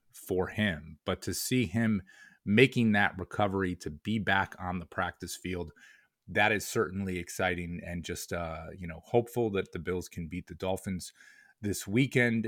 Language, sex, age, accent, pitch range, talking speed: English, male, 30-49, American, 85-100 Hz, 170 wpm